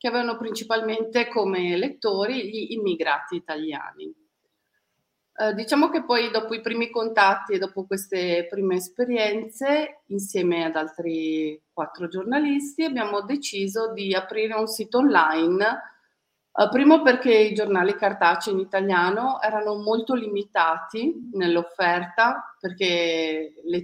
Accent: native